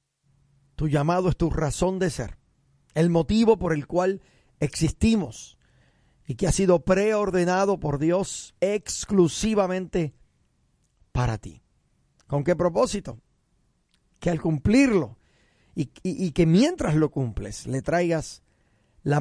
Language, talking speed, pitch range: Spanish, 120 wpm, 140-190 Hz